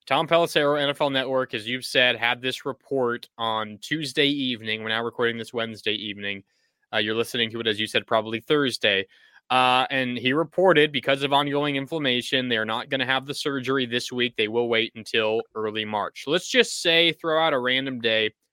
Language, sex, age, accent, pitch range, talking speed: English, male, 20-39, American, 120-150 Hz, 195 wpm